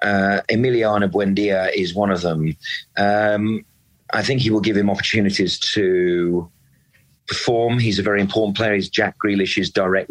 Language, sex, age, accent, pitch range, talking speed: English, male, 40-59, British, 95-110 Hz, 155 wpm